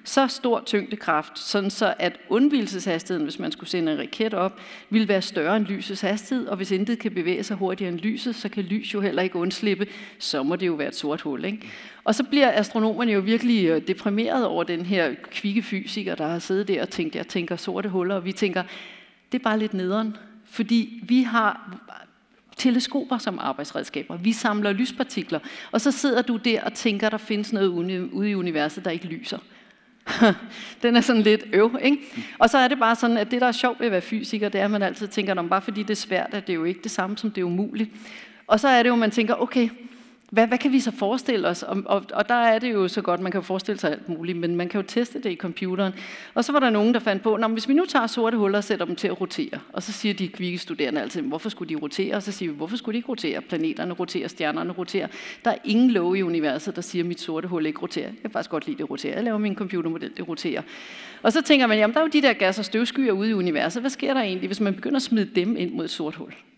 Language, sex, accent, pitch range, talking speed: Danish, female, native, 185-235 Hz, 255 wpm